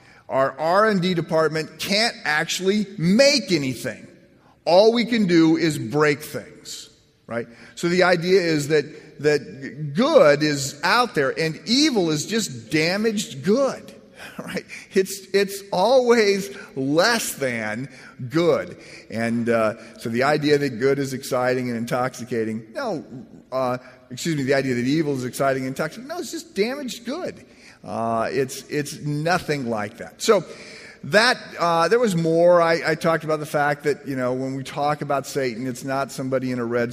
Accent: American